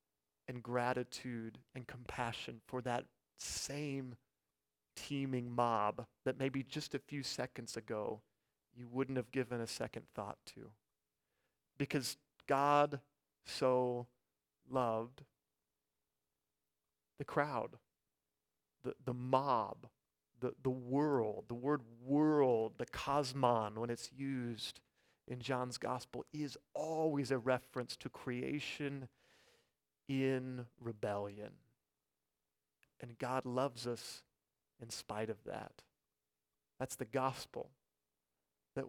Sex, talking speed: male, 105 wpm